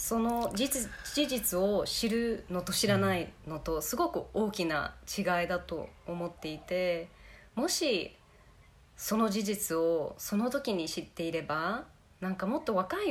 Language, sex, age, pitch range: Japanese, female, 20-39, 155-230 Hz